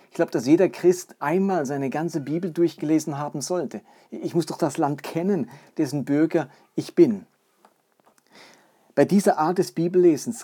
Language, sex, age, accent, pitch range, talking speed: German, male, 40-59, German, 135-170 Hz, 155 wpm